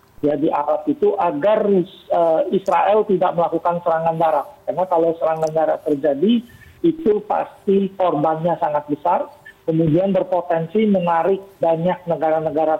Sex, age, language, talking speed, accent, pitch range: male, 50-69, Indonesian, 120 wpm, native, 155-195 Hz